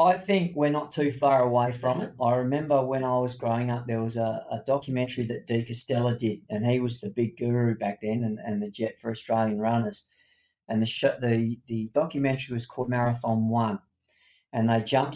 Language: English